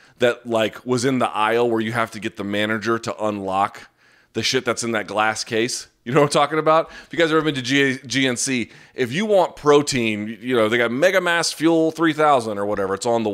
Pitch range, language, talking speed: 105-135 Hz, English, 235 wpm